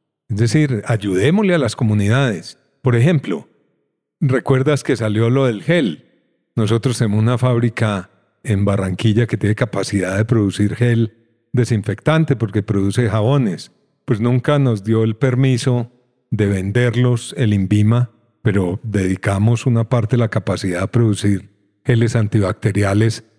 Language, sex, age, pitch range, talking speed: Spanish, male, 40-59, 105-125 Hz, 130 wpm